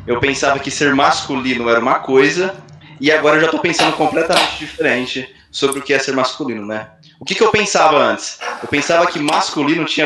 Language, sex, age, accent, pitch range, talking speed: Portuguese, male, 20-39, Brazilian, 130-155 Hz, 205 wpm